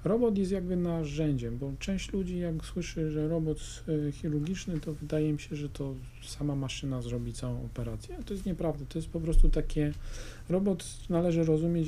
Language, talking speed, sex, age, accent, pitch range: Polish, 170 wpm, male, 50-69, native, 130-160 Hz